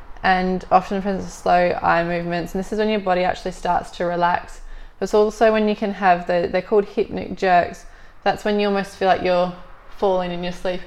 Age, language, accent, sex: 20-39, English, Australian, female